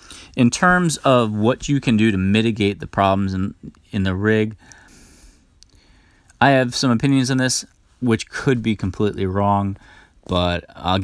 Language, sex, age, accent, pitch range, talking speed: English, male, 30-49, American, 95-115 Hz, 150 wpm